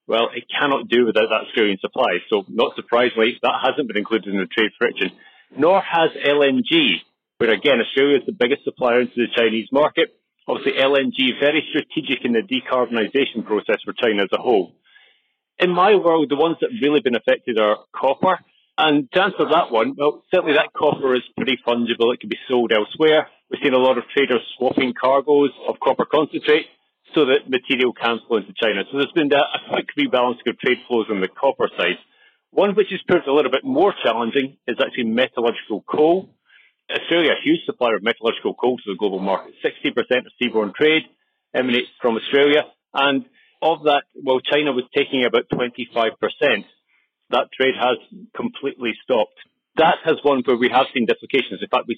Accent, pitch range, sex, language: British, 120-160 Hz, male, English